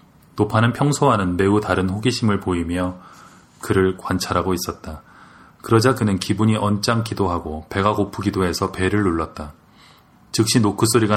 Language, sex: Korean, male